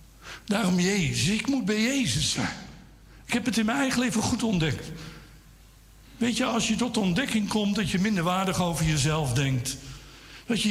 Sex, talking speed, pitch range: male, 180 wpm, 140-210 Hz